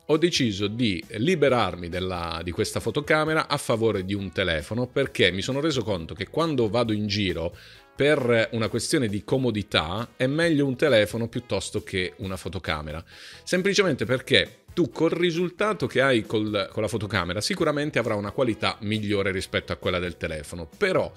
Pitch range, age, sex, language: 100-130 Hz, 40-59, male, Italian